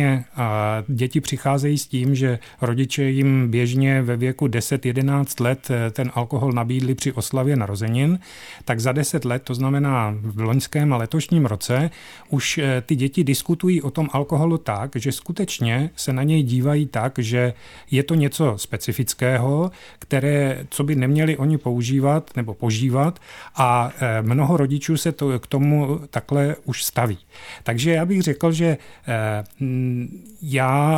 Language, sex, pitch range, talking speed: Czech, male, 125-150 Hz, 140 wpm